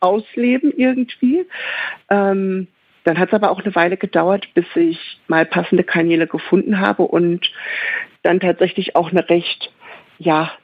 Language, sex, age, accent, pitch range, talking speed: German, female, 50-69, German, 165-195 Hz, 140 wpm